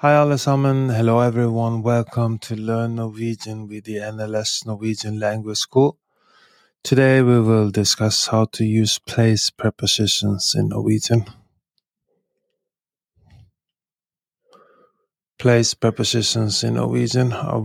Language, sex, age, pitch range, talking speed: English, male, 20-39, 110-125 Hz, 105 wpm